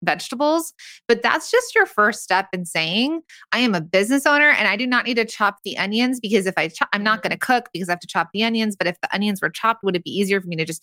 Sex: female